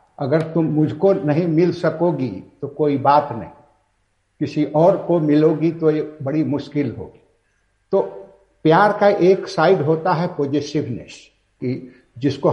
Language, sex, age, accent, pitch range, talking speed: Hindi, male, 70-89, native, 135-170 Hz, 140 wpm